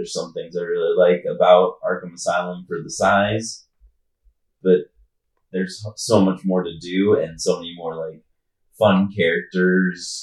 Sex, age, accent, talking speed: male, 30-49, American, 155 wpm